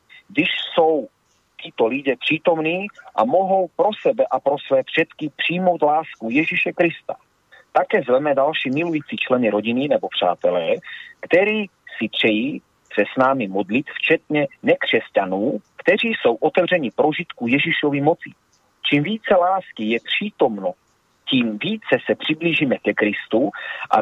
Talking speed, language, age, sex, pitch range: 130 wpm, Slovak, 40-59, male, 155-215 Hz